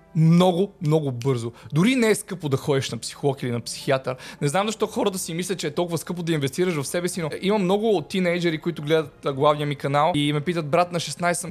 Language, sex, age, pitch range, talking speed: Bulgarian, male, 20-39, 135-170 Hz, 240 wpm